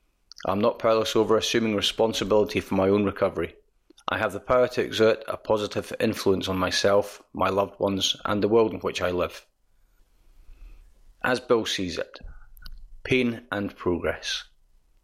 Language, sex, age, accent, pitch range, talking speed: English, male, 30-49, British, 95-110 Hz, 150 wpm